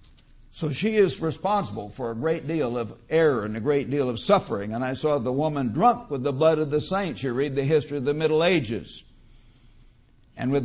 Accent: American